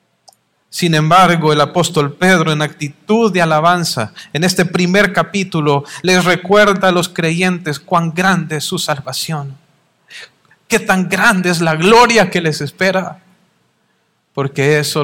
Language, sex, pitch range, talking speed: English, male, 155-240 Hz, 135 wpm